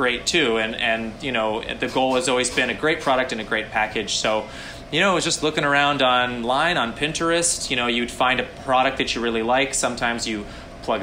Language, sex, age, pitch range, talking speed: English, male, 20-39, 120-145 Hz, 230 wpm